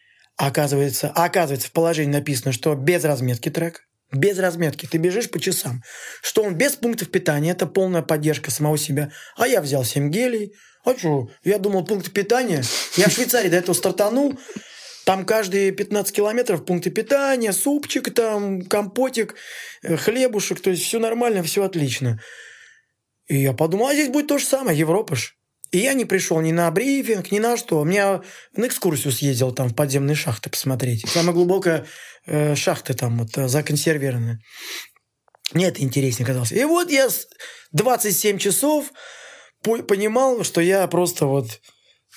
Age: 20-39